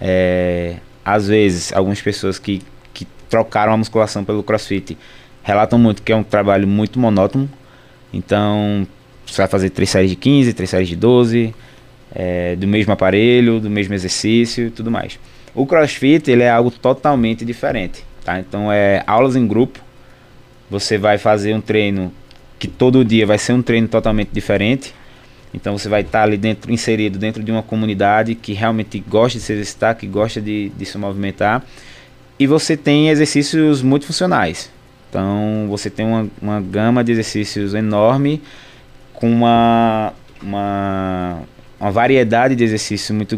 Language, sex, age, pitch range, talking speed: Portuguese, male, 20-39, 100-125 Hz, 160 wpm